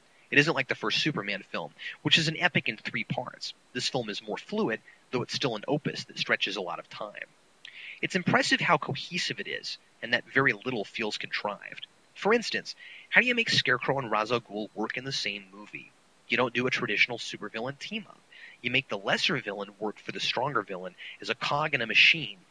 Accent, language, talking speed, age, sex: American, English, 215 wpm, 30-49, male